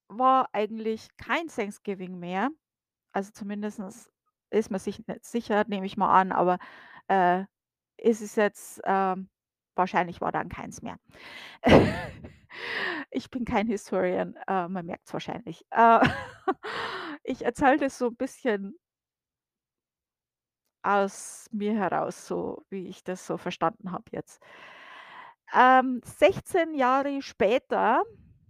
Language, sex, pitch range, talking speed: German, female, 195-255 Hz, 120 wpm